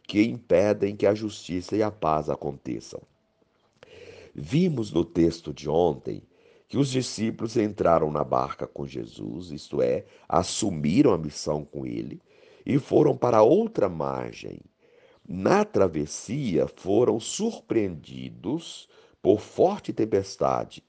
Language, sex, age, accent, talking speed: Portuguese, male, 50-69, Brazilian, 120 wpm